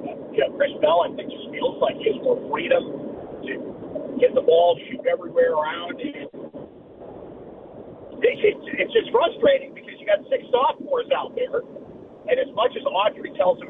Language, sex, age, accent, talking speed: English, male, 40-59, American, 160 wpm